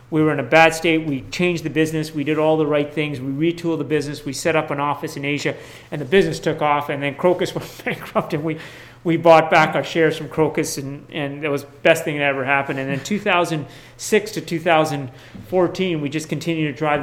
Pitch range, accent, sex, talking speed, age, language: 145-180 Hz, American, male, 235 wpm, 40-59, English